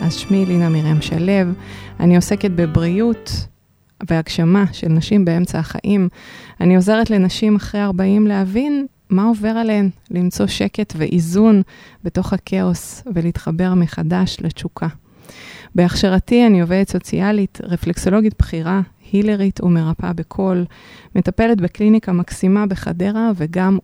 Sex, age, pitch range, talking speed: female, 20-39, 170-205 Hz, 110 wpm